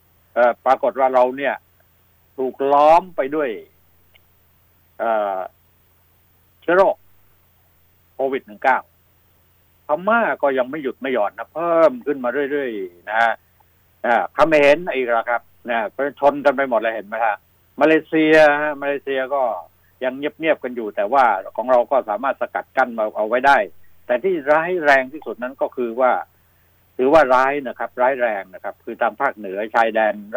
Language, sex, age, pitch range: Thai, male, 60-79, 95-145 Hz